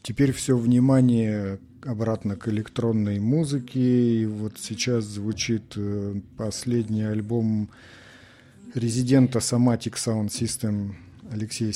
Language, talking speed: Russian, 90 wpm